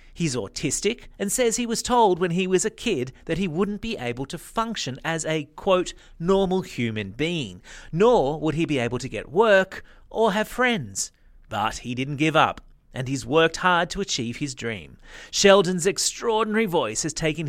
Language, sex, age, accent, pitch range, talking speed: English, male, 30-49, Australian, 130-185 Hz, 185 wpm